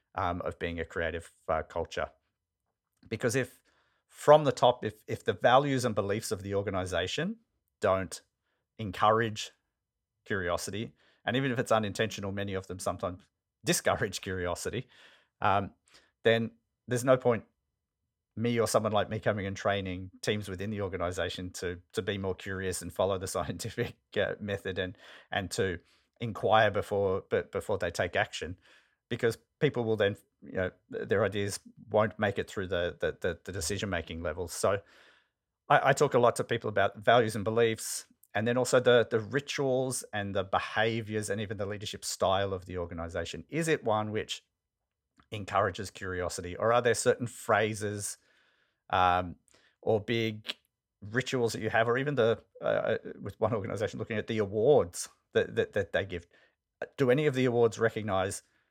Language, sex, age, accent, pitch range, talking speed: English, male, 40-59, Australian, 95-120 Hz, 165 wpm